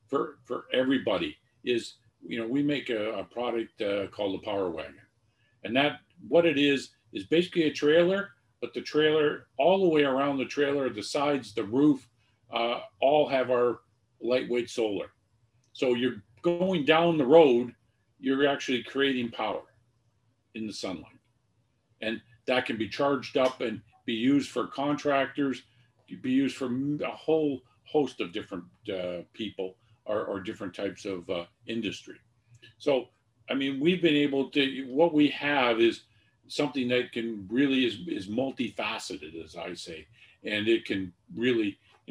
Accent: American